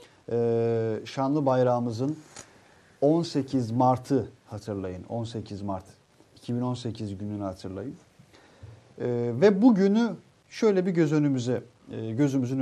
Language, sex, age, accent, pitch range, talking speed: Turkish, male, 50-69, native, 115-155 Hz, 90 wpm